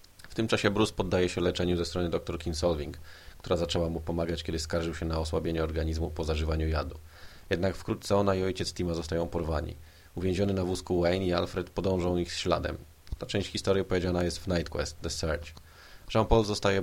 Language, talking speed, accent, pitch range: Polish, 195 wpm, native, 85-90 Hz